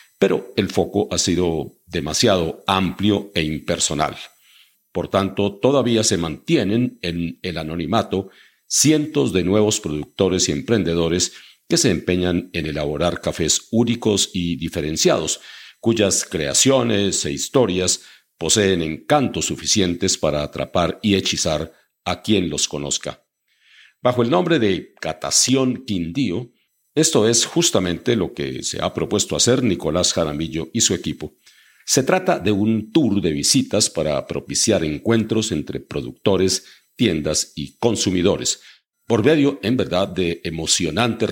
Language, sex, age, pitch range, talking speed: Spanish, male, 50-69, 85-110 Hz, 130 wpm